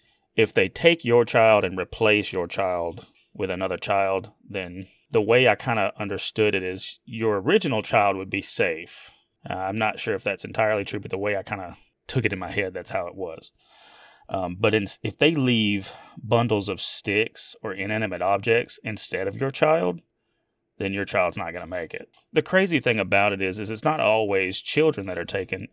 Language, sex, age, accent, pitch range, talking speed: English, male, 30-49, American, 95-115 Hz, 205 wpm